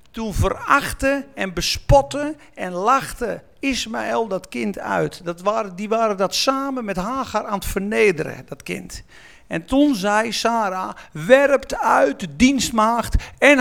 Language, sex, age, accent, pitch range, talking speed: Dutch, male, 50-69, Dutch, 180-250 Hz, 130 wpm